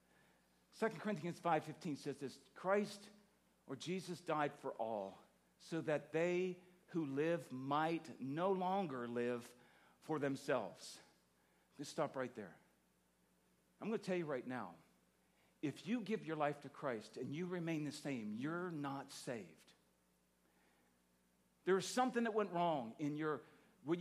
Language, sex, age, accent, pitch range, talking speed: English, male, 50-69, American, 135-185 Hz, 140 wpm